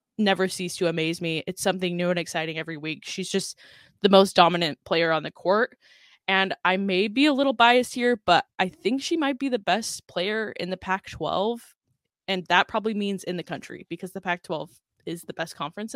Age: 10-29